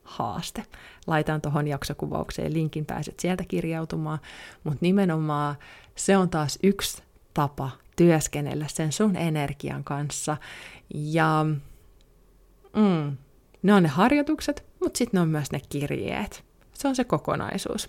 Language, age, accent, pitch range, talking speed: Finnish, 20-39, native, 145-195 Hz, 125 wpm